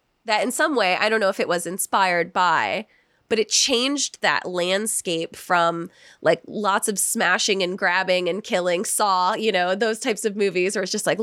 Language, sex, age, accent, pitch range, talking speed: English, female, 20-39, American, 175-235 Hz, 200 wpm